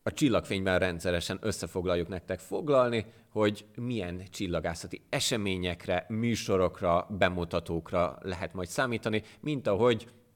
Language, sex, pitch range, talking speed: Hungarian, male, 90-110 Hz, 100 wpm